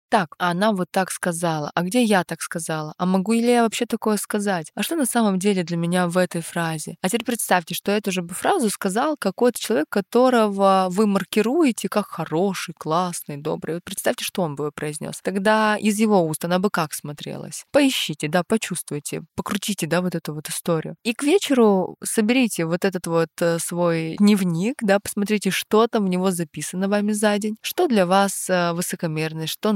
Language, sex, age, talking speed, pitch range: Russian, female, 20-39, 185 wpm, 170-210 Hz